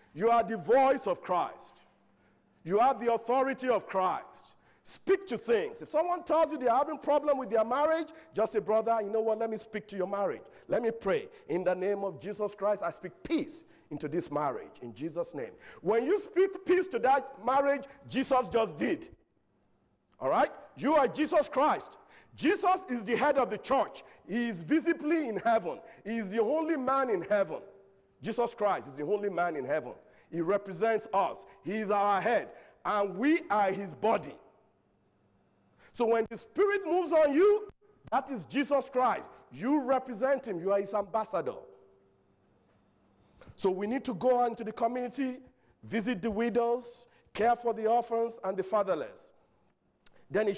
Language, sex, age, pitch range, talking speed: English, male, 50-69, 205-285 Hz, 180 wpm